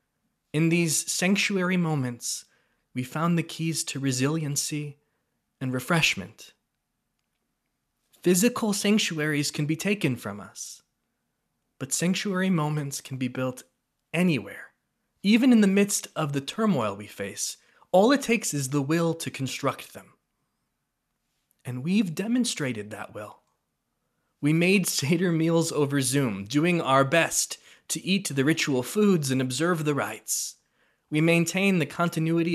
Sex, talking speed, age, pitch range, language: male, 130 wpm, 20-39, 140-175 Hz, English